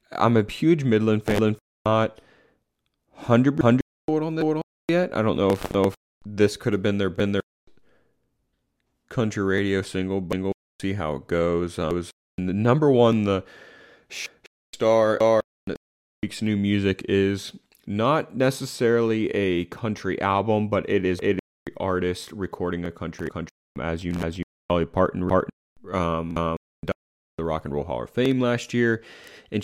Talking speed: 175 wpm